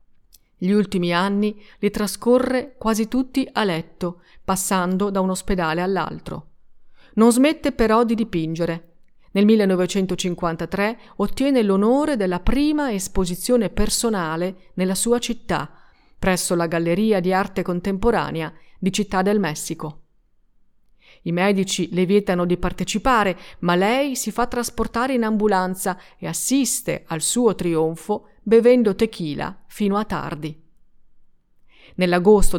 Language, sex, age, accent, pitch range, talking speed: Italian, female, 40-59, native, 175-220 Hz, 120 wpm